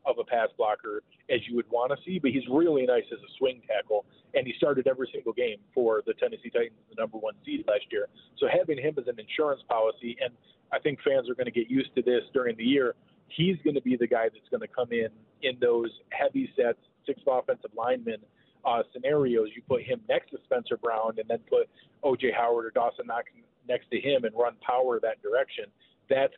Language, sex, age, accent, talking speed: English, male, 40-59, American, 225 wpm